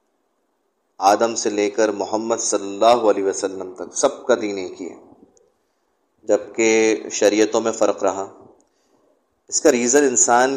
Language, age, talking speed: Urdu, 30-49, 140 wpm